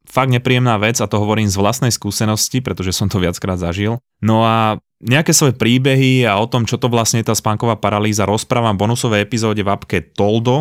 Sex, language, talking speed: male, Slovak, 205 wpm